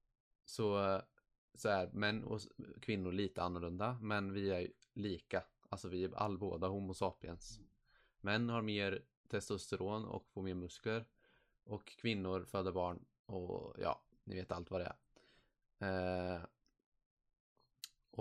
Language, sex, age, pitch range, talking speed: Swedish, male, 20-39, 95-105 Hz, 130 wpm